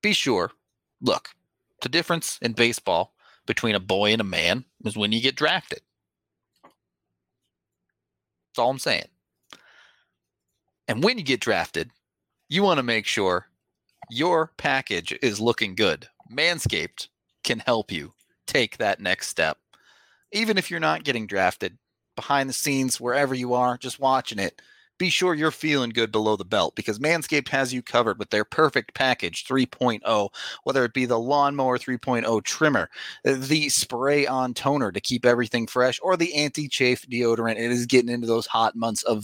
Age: 30-49